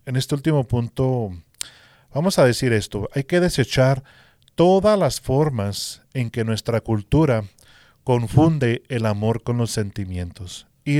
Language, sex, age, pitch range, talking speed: English, male, 40-59, 105-130 Hz, 135 wpm